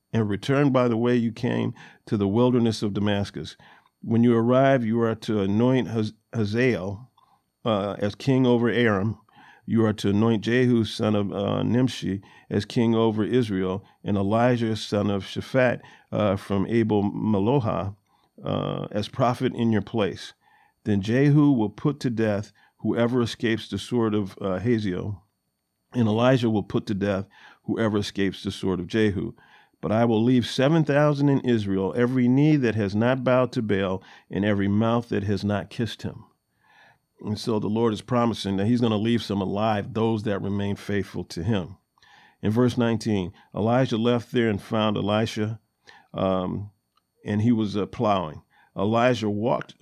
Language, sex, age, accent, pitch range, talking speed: English, male, 50-69, American, 100-120 Hz, 165 wpm